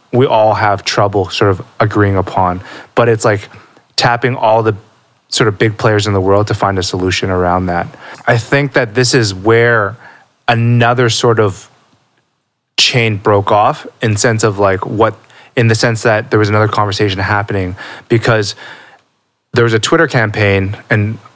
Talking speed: 170 wpm